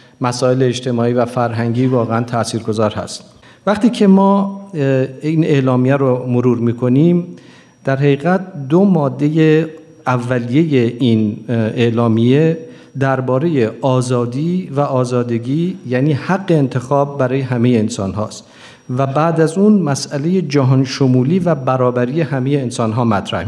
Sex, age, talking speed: male, 50-69, 120 wpm